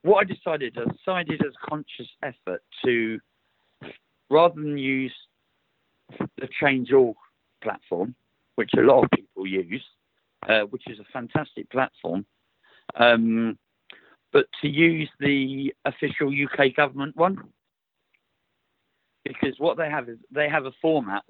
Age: 50-69